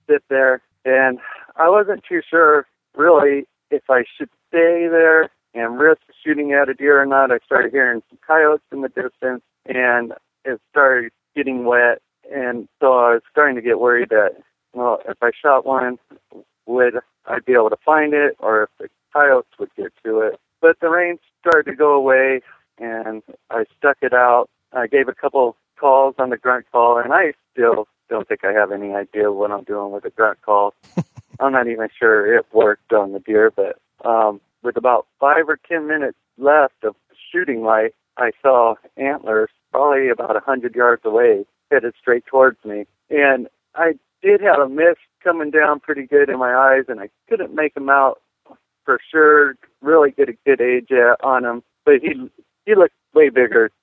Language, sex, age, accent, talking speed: English, male, 40-59, American, 185 wpm